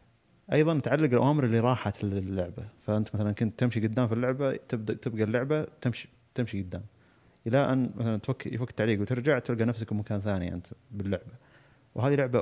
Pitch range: 100-120 Hz